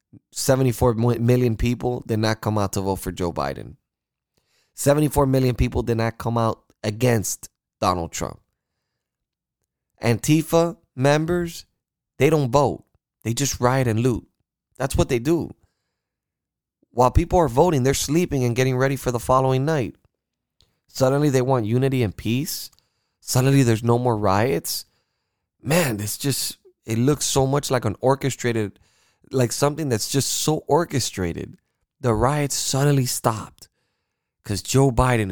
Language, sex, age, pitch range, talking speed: English, male, 20-39, 110-135 Hz, 140 wpm